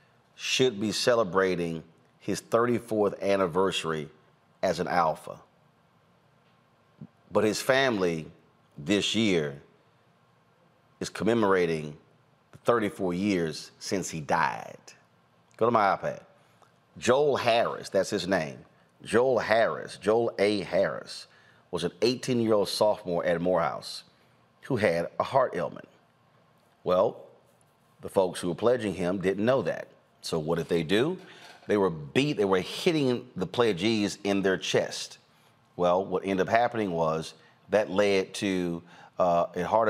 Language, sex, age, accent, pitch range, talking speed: English, male, 40-59, American, 90-125 Hz, 130 wpm